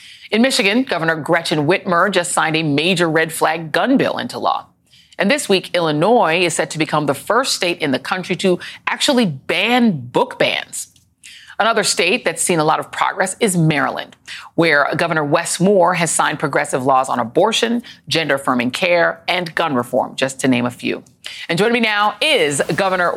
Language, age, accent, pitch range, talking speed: English, 40-59, American, 160-210 Hz, 185 wpm